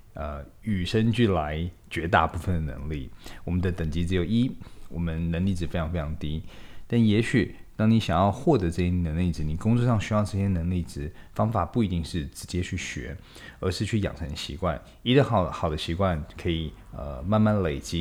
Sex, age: male, 20-39